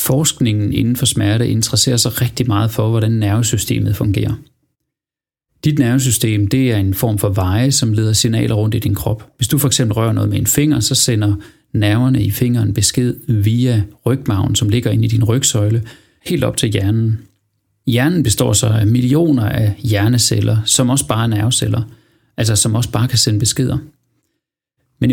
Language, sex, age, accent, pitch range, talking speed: Danish, male, 30-49, native, 110-130 Hz, 175 wpm